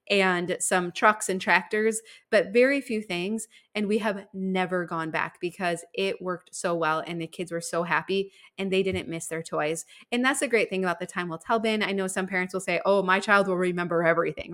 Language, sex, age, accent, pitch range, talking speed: English, female, 20-39, American, 180-220 Hz, 225 wpm